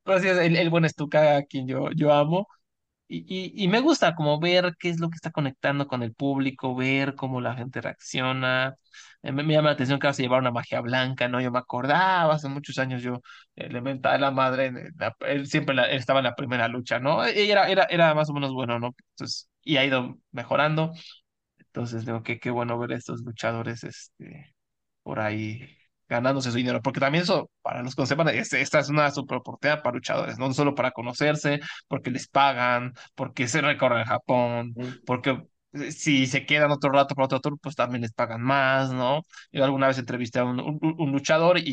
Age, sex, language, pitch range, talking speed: 20-39, male, English, 125-150 Hz, 205 wpm